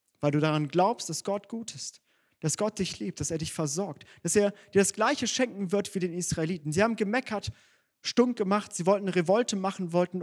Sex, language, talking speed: male, German, 210 wpm